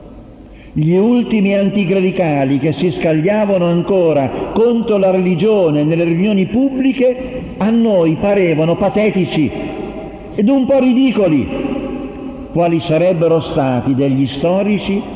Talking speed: 105 wpm